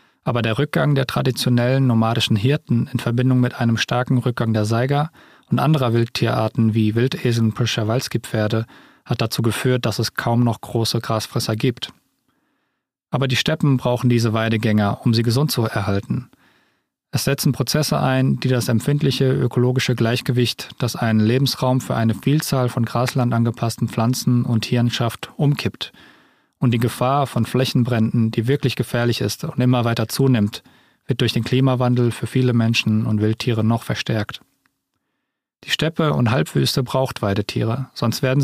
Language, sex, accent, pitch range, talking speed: German, male, German, 115-130 Hz, 150 wpm